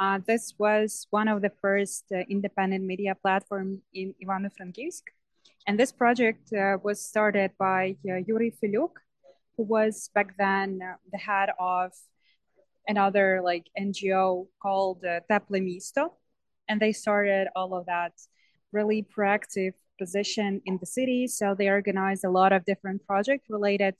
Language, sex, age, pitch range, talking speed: English, female, 20-39, 195-220 Hz, 145 wpm